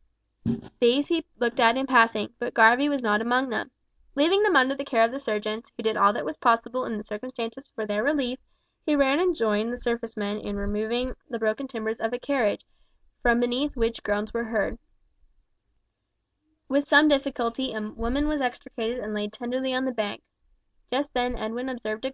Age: 10-29